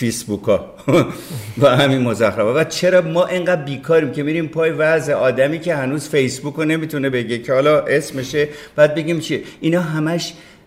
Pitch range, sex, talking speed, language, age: 110-150 Hz, male, 170 wpm, Persian, 50-69